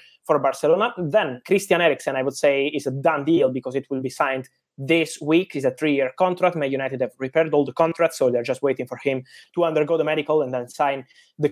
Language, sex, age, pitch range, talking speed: English, male, 20-39, 135-165 Hz, 230 wpm